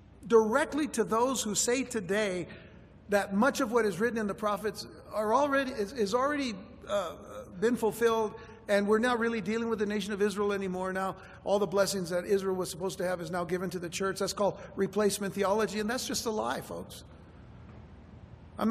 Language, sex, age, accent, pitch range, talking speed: English, male, 60-79, American, 180-235 Hz, 195 wpm